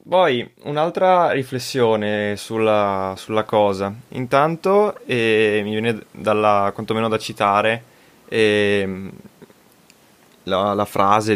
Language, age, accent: Italian, 20-39, native